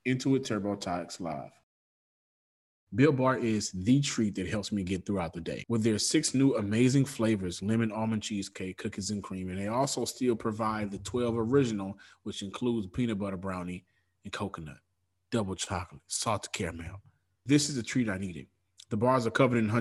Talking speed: 175 wpm